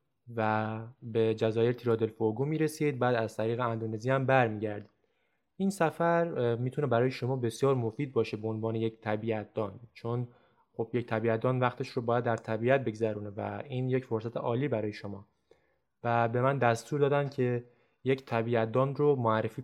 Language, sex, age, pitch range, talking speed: Persian, male, 20-39, 115-145 Hz, 160 wpm